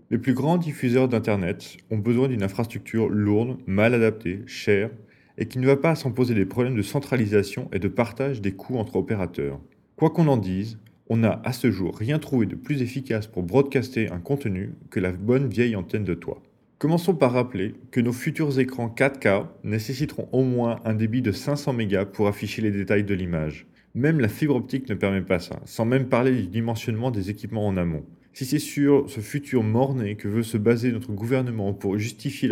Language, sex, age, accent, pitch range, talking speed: French, male, 30-49, French, 105-135 Hz, 205 wpm